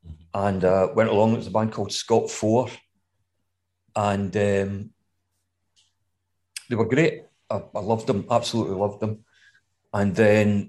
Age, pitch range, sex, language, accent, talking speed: 40-59, 95-110 Hz, male, English, British, 135 wpm